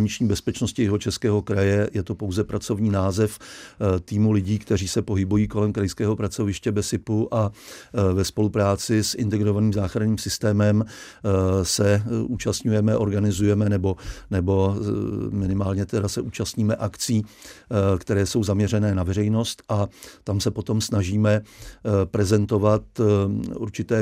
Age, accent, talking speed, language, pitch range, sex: 50-69, native, 120 wpm, Czech, 100-110 Hz, male